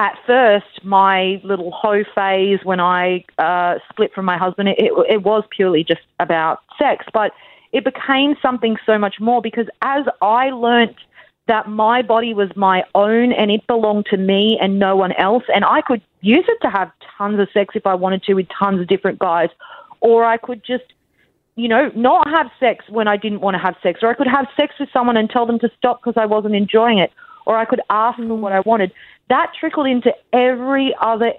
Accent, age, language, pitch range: Australian, 30-49, English, 195-240 Hz